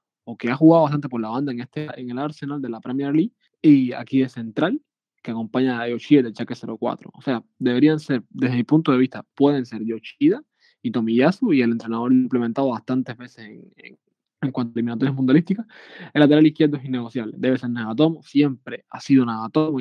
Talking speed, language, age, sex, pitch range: 205 wpm, Spanish, 20-39, male, 125-155 Hz